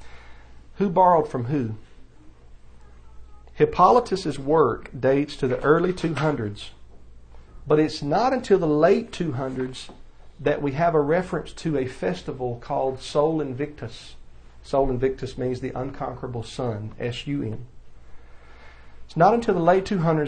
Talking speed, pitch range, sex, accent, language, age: 120 wpm, 115-150 Hz, male, American, English, 50-69